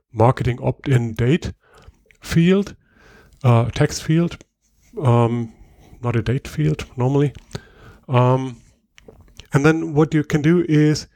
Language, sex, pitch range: English, male, 115-150 Hz